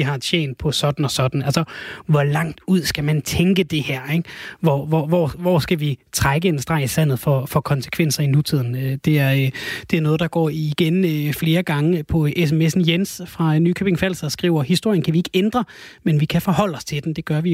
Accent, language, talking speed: native, Danish, 220 wpm